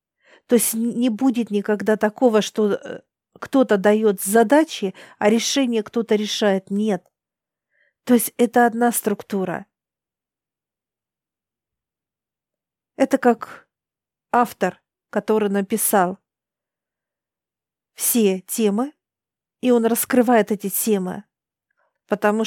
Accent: native